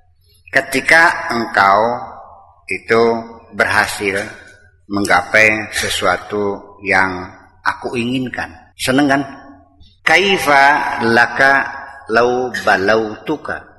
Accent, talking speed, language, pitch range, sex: native, 65 wpm, Indonesian, 100-145 Hz, male